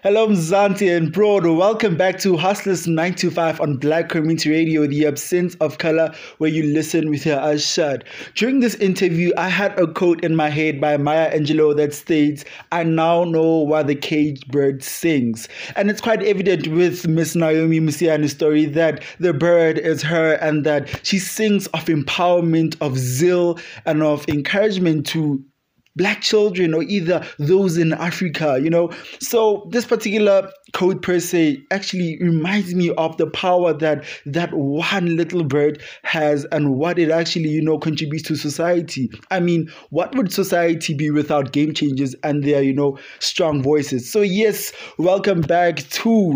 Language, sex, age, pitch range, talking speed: English, male, 20-39, 150-185 Hz, 165 wpm